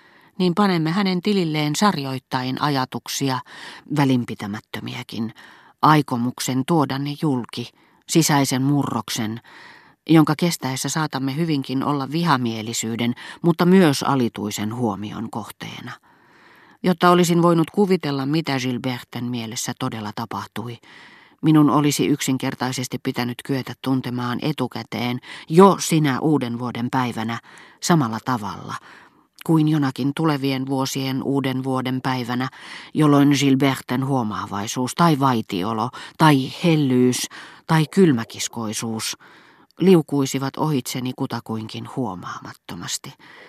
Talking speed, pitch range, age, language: 90 wpm, 120-150 Hz, 40-59, Finnish